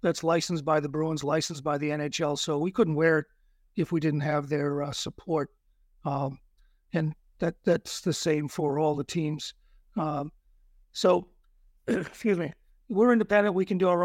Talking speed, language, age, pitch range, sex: 175 wpm, English, 50-69, 155-180 Hz, male